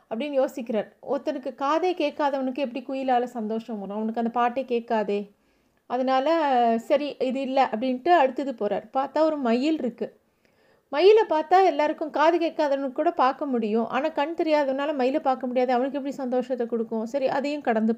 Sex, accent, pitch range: female, native, 235-300 Hz